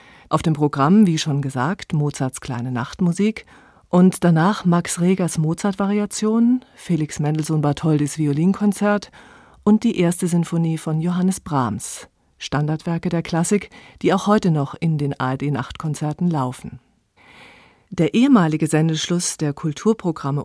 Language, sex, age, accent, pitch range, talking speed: German, female, 40-59, German, 150-190 Hz, 115 wpm